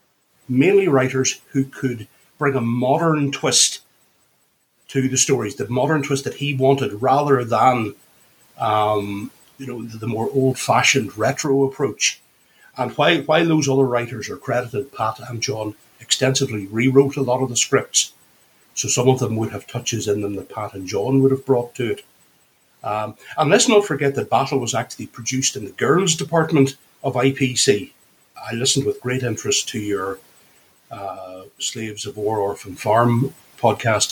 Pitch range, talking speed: 105-135 Hz, 165 wpm